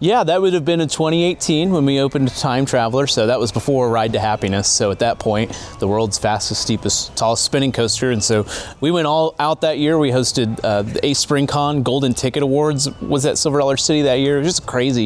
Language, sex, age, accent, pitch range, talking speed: English, male, 30-49, American, 105-140 Hz, 240 wpm